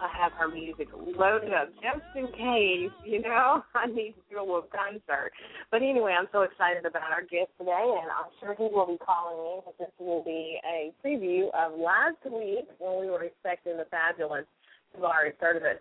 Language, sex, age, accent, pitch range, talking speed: English, female, 30-49, American, 165-200 Hz, 195 wpm